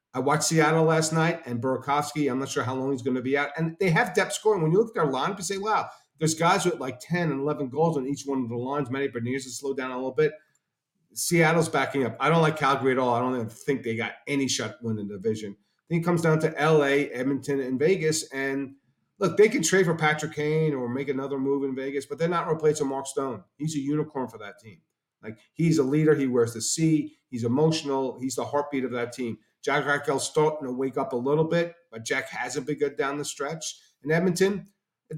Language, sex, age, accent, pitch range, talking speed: English, male, 40-59, American, 135-160 Hz, 245 wpm